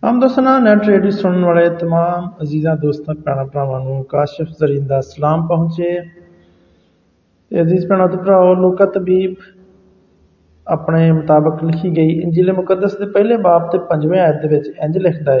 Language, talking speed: Hindi, 130 wpm